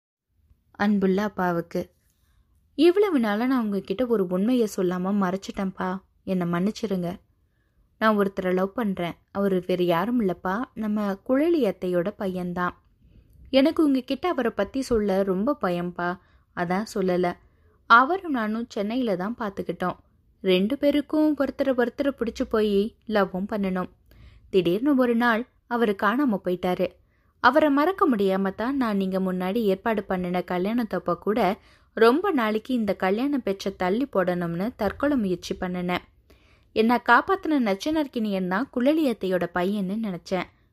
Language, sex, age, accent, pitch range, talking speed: Tamil, female, 20-39, native, 185-245 Hz, 115 wpm